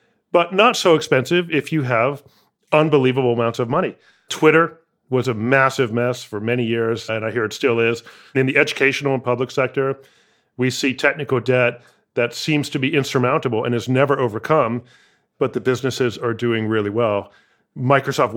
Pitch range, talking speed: 120-140 Hz, 170 wpm